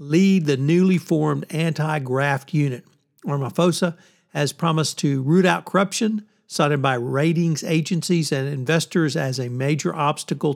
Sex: male